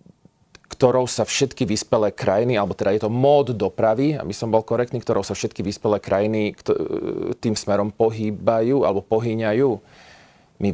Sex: male